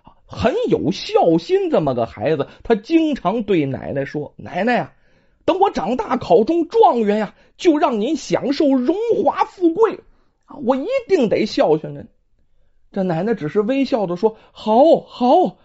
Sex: male